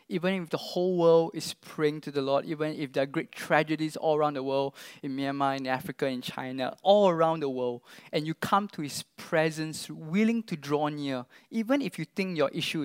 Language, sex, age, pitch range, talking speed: English, male, 20-39, 150-195 Hz, 215 wpm